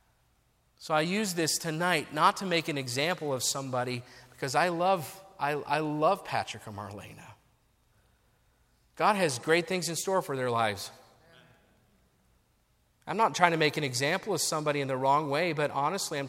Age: 40-59